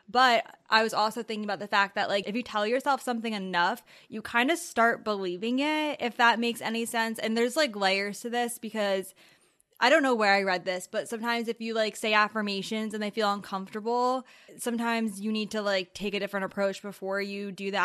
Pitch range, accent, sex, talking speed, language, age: 190-220 Hz, American, female, 220 wpm, English, 10-29